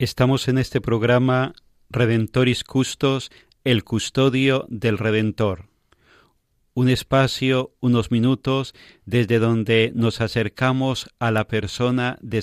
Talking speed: 105 wpm